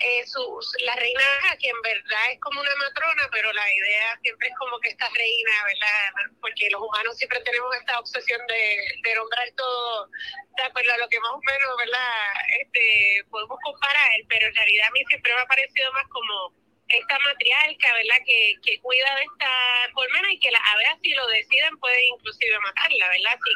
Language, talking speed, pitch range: Spanish, 195 wpm, 230-285 Hz